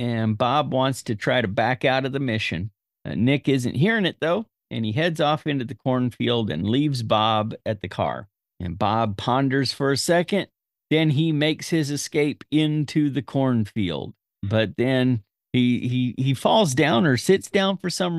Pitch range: 115-155 Hz